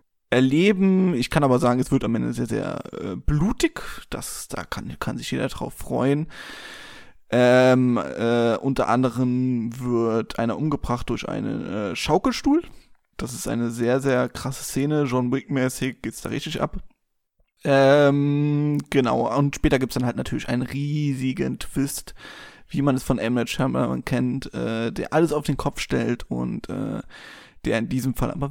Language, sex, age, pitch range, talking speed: German, male, 20-39, 125-160 Hz, 160 wpm